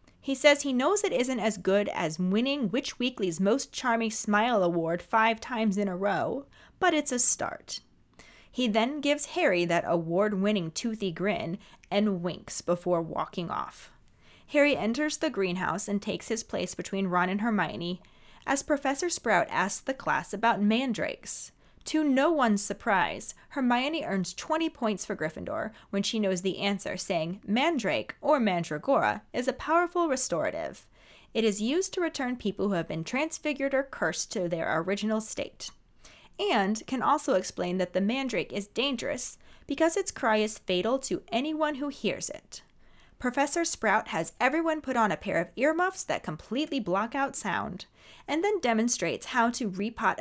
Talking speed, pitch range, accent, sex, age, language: 165 wpm, 195-280 Hz, American, female, 30-49, English